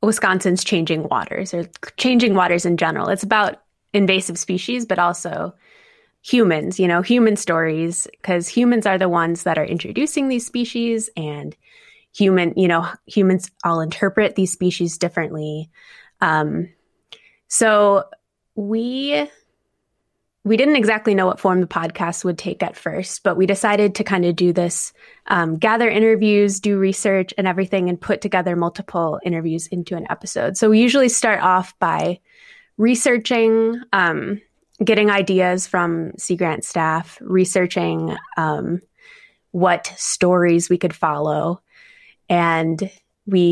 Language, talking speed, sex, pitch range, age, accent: English, 140 wpm, female, 175-215 Hz, 20-39, American